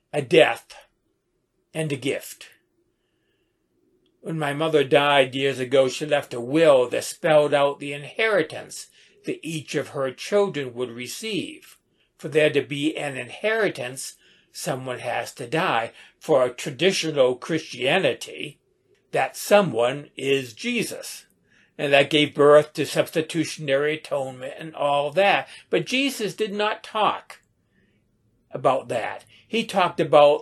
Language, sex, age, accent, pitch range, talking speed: English, male, 60-79, American, 145-195 Hz, 130 wpm